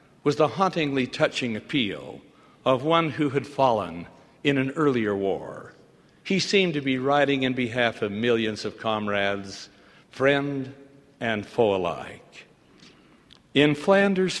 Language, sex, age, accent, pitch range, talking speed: English, male, 60-79, American, 125-160 Hz, 130 wpm